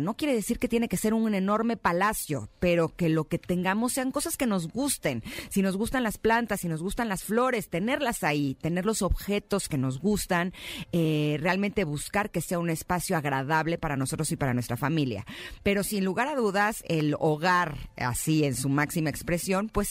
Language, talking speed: Spanish, 195 wpm